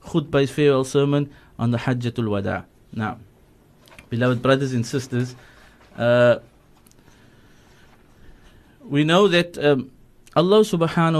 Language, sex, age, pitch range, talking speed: English, male, 30-49, 125-160 Hz, 100 wpm